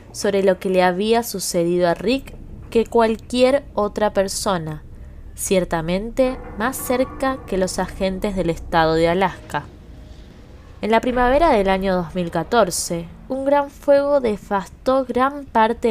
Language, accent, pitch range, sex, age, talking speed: Spanish, Argentinian, 170-225 Hz, female, 20-39, 130 wpm